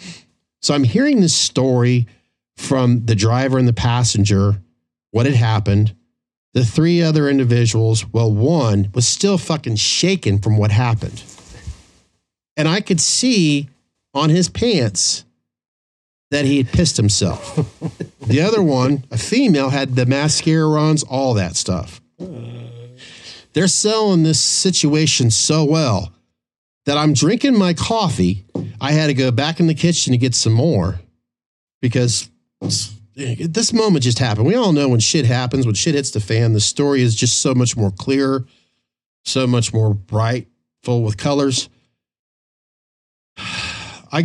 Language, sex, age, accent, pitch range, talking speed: English, male, 50-69, American, 110-145 Hz, 145 wpm